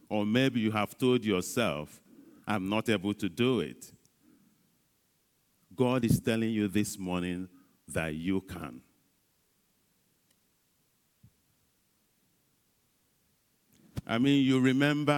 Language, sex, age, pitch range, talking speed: English, male, 50-69, 95-120 Hz, 100 wpm